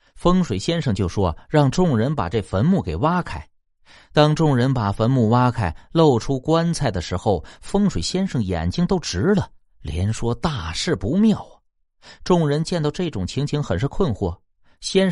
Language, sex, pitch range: Chinese, male, 95-150 Hz